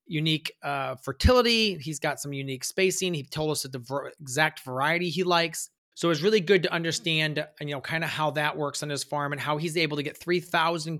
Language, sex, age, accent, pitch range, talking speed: English, male, 30-49, American, 150-180 Hz, 230 wpm